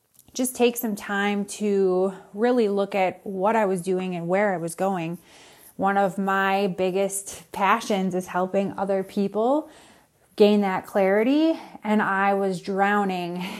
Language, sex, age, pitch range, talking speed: English, female, 30-49, 195-225 Hz, 145 wpm